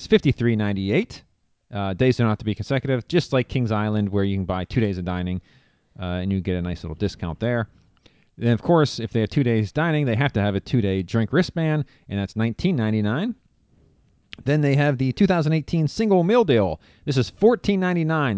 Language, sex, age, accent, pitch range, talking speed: English, male, 30-49, American, 100-145 Hz, 195 wpm